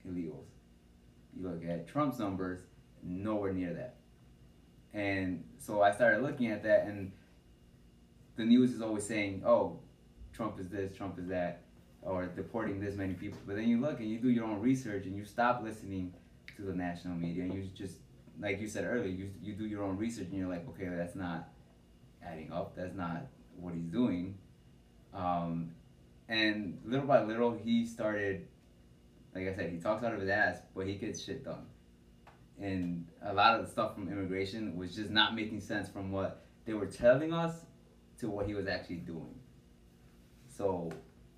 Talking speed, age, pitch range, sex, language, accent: 180 wpm, 20-39, 85-105 Hz, male, English, American